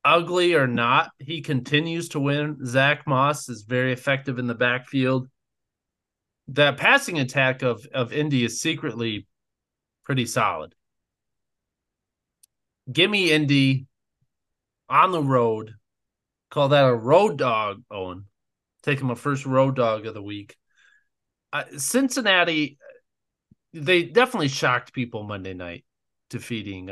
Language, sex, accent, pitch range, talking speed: English, male, American, 110-145 Hz, 125 wpm